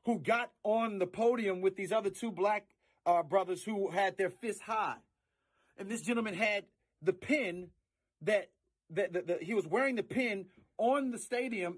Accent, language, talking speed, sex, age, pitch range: American, English, 180 wpm, male, 40-59, 180-245 Hz